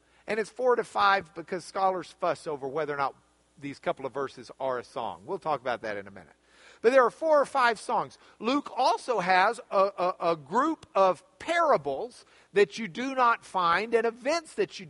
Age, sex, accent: 50-69, male, American